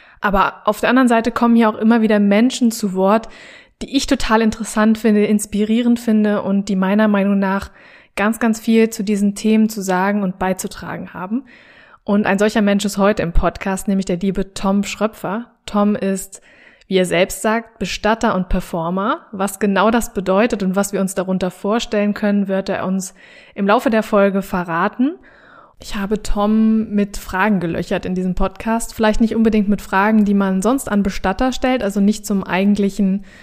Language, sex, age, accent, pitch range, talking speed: German, female, 20-39, German, 195-225 Hz, 180 wpm